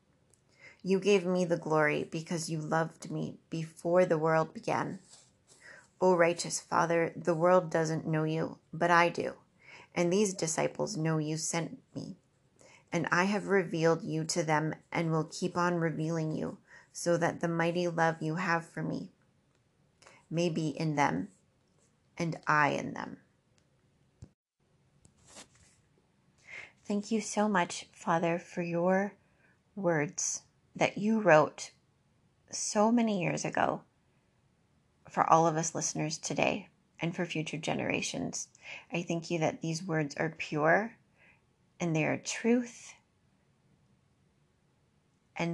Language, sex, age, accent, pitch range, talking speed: English, female, 30-49, American, 160-175 Hz, 130 wpm